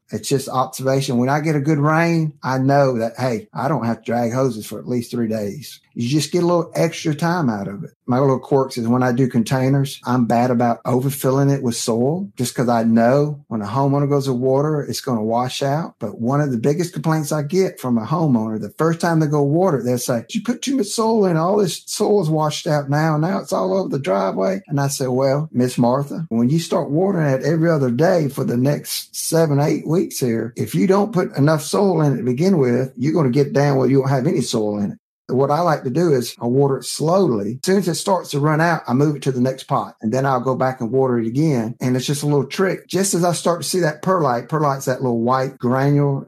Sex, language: male, English